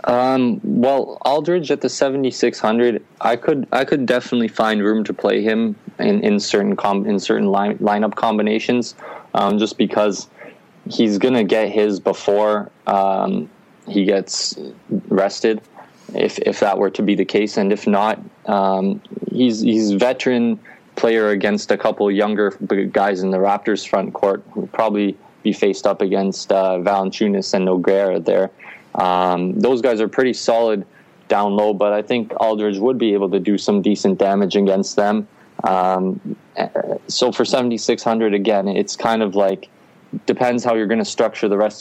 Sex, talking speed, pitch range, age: male, 165 wpm, 100-115 Hz, 20-39